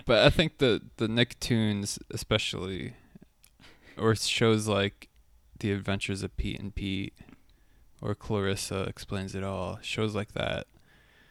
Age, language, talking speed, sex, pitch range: 20-39, English, 125 wpm, male, 95-110 Hz